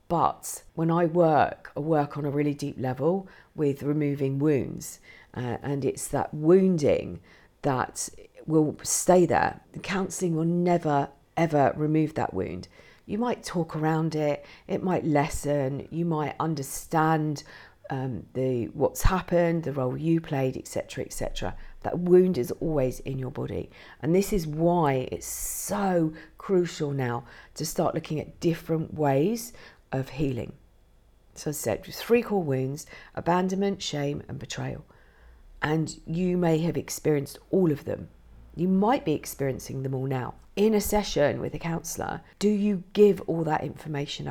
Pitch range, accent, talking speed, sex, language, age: 140-180 Hz, British, 155 wpm, female, English, 50-69